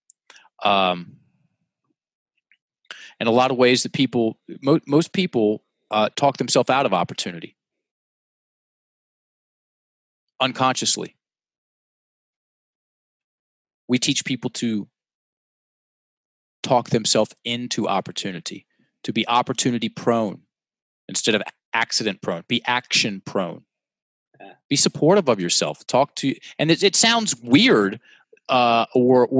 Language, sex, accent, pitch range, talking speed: English, male, American, 120-145 Hz, 100 wpm